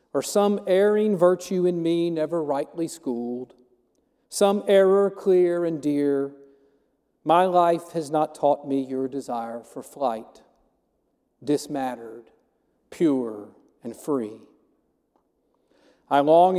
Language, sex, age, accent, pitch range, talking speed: English, male, 50-69, American, 145-210 Hz, 110 wpm